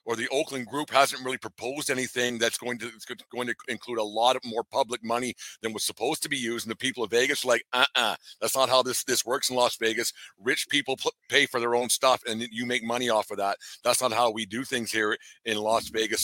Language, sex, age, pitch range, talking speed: English, male, 50-69, 115-130 Hz, 255 wpm